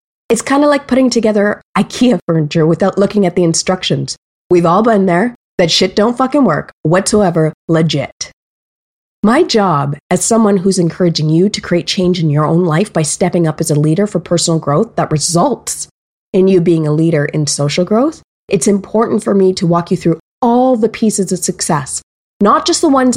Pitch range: 165-215 Hz